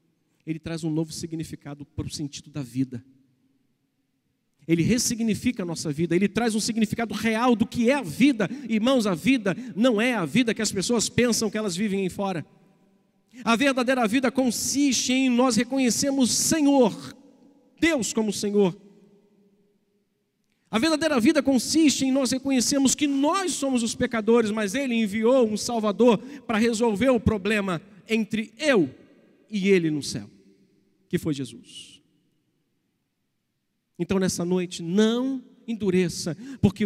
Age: 50-69